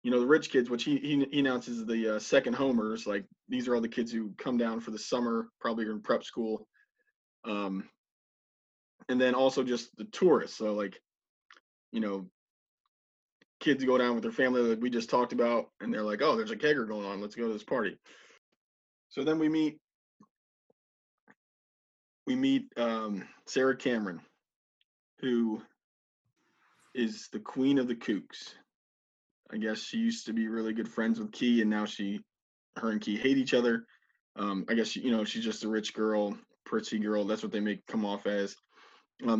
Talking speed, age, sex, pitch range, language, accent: 185 wpm, 20-39, male, 105-130 Hz, English, American